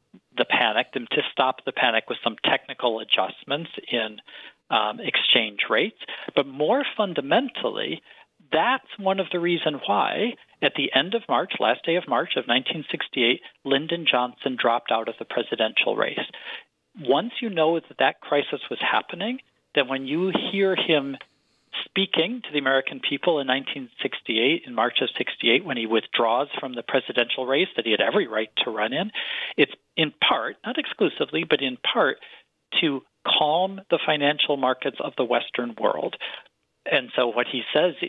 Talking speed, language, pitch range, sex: 165 wpm, English, 135-190 Hz, male